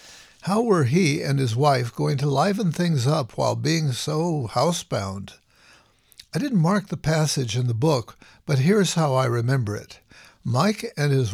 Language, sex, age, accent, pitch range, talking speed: English, male, 60-79, American, 125-165 Hz, 170 wpm